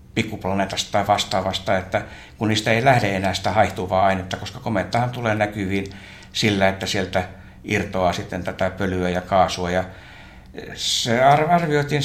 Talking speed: 140 wpm